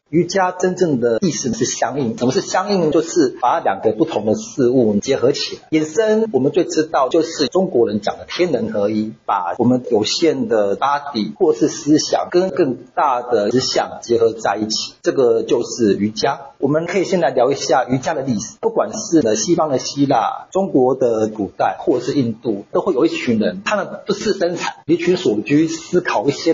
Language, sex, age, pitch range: Chinese, male, 50-69, 130-190 Hz